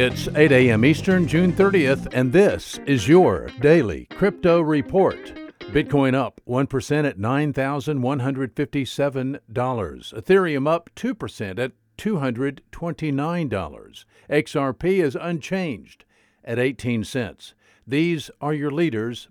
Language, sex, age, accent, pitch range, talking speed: English, male, 50-69, American, 125-165 Hz, 100 wpm